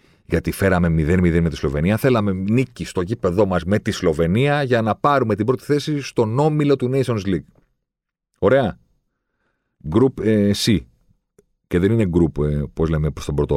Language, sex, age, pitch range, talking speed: Greek, male, 40-59, 80-120 Hz, 175 wpm